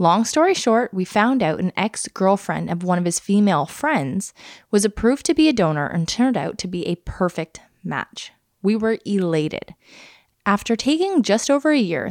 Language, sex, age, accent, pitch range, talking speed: English, female, 20-39, American, 175-245 Hz, 185 wpm